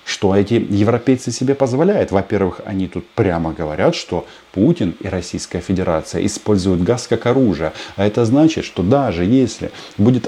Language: Russian